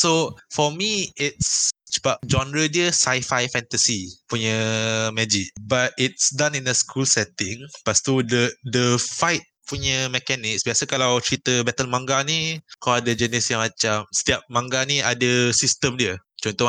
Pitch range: 110-130 Hz